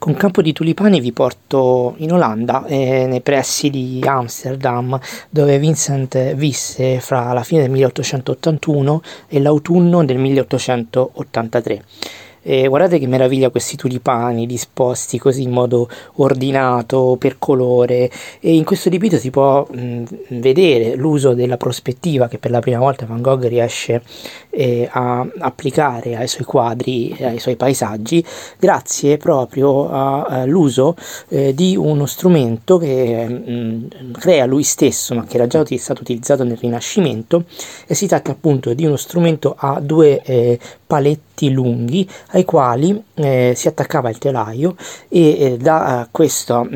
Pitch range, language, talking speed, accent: 120-150 Hz, Italian, 140 wpm, native